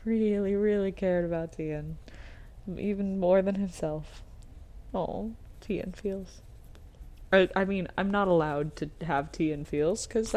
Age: 20-39